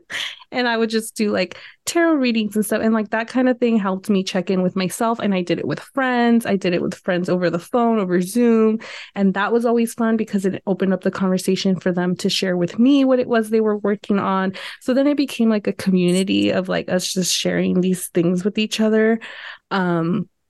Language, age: English, 20-39